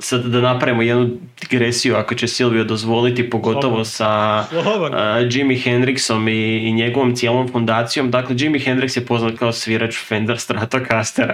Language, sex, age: Croatian, male, 20-39